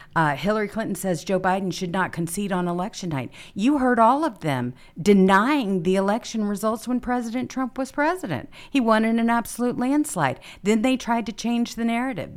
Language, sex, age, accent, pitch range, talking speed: English, female, 50-69, American, 155-225 Hz, 190 wpm